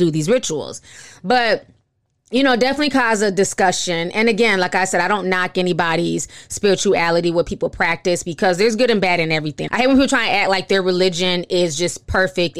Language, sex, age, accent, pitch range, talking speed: English, female, 20-39, American, 175-210 Hz, 205 wpm